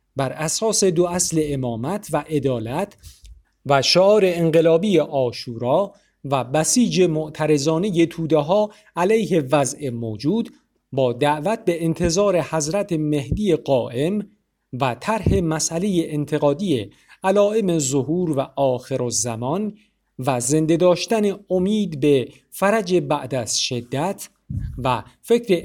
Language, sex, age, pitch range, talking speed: Persian, male, 50-69, 140-190 Hz, 110 wpm